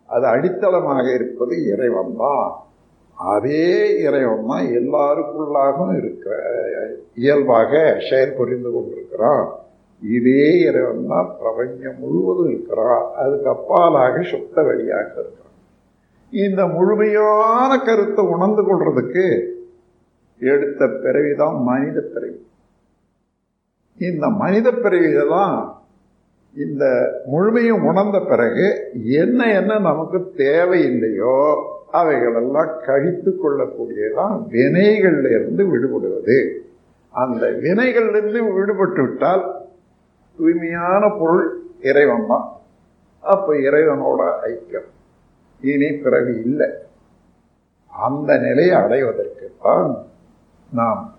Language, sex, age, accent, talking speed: Tamil, male, 50-69, native, 75 wpm